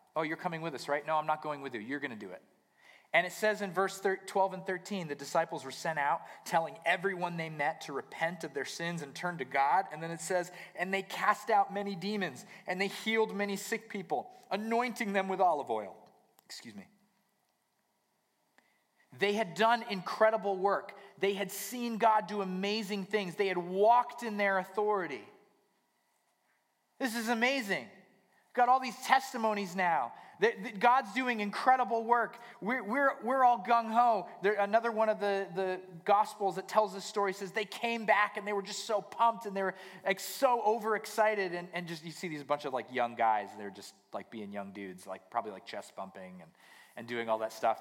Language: English